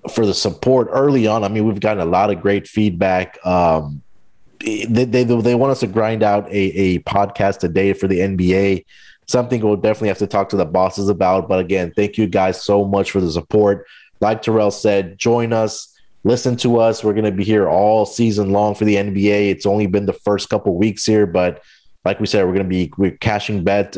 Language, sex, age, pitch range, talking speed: English, male, 30-49, 95-110 Hz, 225 wpm